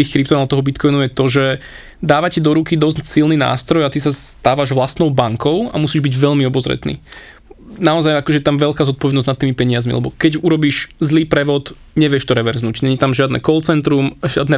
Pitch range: 135-155 Hz